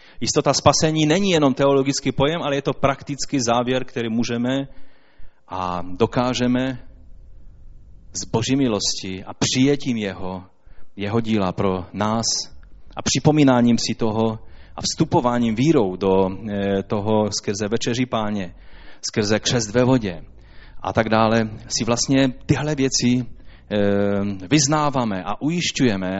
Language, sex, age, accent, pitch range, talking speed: Czech, male, 30-49, native, 110-150 Hz, 115 wpm